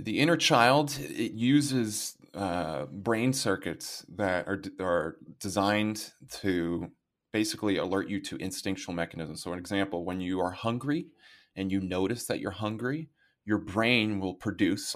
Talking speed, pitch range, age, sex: 150 wpm, 90-115 Hz, 20-39, male